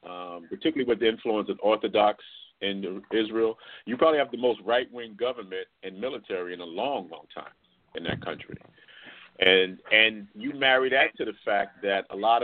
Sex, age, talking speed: male, 50-69, 180 wpm